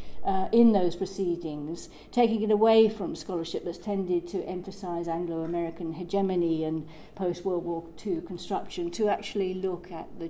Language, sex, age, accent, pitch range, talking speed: English, female, 50-69, British, 170-205 Hz, 145 wpm